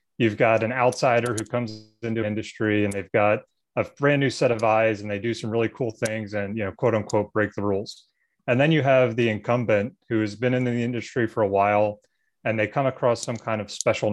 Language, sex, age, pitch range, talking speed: English, male, 30-49, 105-120 Hz, 235 wpm